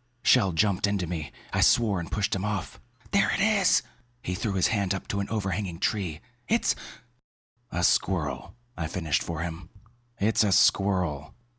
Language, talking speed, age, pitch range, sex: English, 165 wpm, 30-49, 85-115 Hz, male